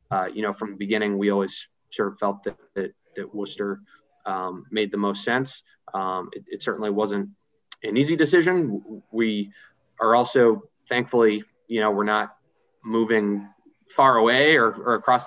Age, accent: 20-39, American